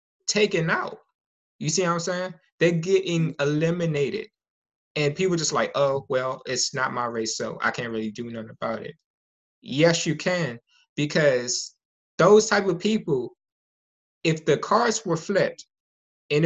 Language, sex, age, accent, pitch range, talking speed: English, male, 20-39, American, 140-180 Hz, 155 wpm